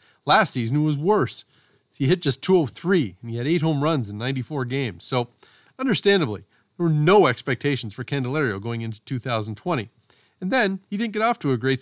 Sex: male